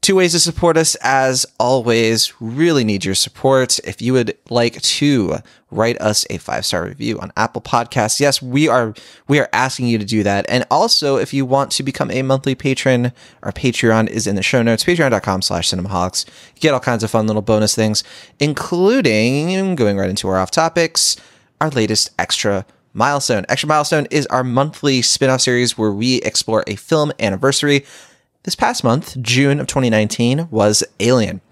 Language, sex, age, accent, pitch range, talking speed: English, male, 20-39, American, 105-140 Hz, 180 wpm